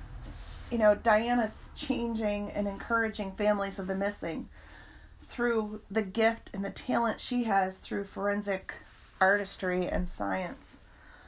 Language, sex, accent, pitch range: English, female, American, 190-225 Hz